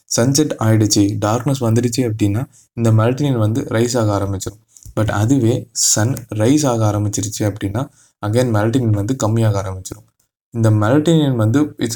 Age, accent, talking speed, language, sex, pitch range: 20-39, native, 135 wpm, Tamil, male, 110-135 Hz